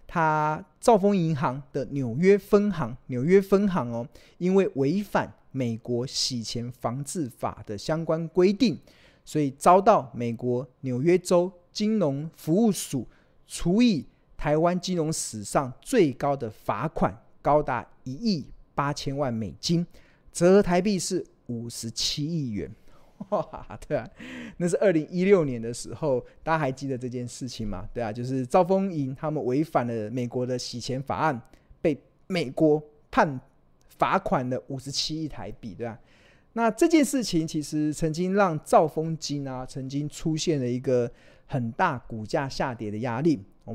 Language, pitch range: Chinese, 120-170 Hz